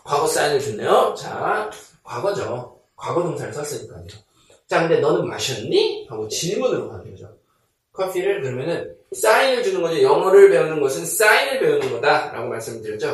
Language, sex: Korean, male